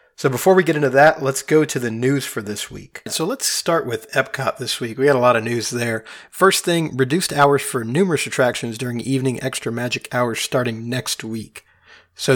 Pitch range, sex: 115-140 Hz, male